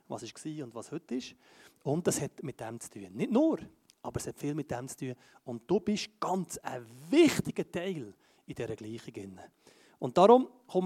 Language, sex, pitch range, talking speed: German, male, 125-180 Hz, 200 wpm